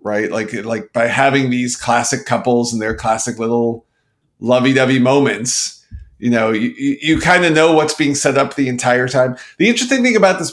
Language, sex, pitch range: English, male, 115-150 Hz